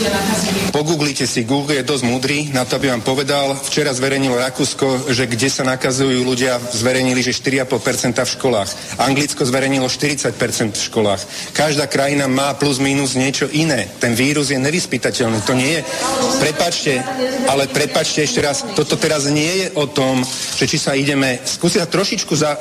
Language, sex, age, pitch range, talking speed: Slovak, male, 40-59, 135-165 Hz, 165 wpm